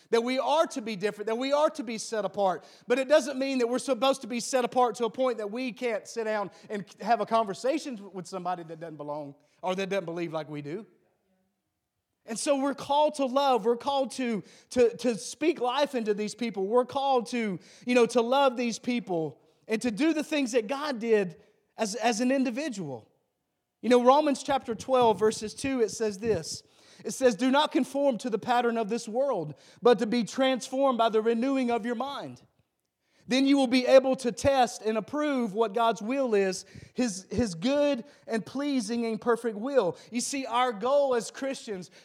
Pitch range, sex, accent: 210-265 Hz, male, American